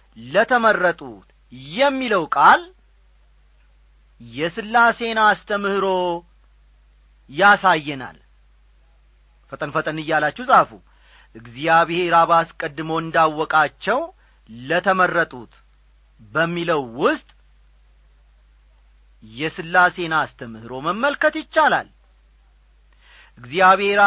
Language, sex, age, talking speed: Amharic, male, 40-59, 55 wpm